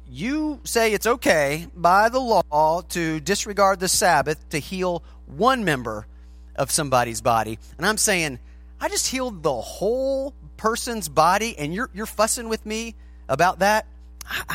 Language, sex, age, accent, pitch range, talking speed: English, male, 30-49, American, 130-190 Hz, 155 wpm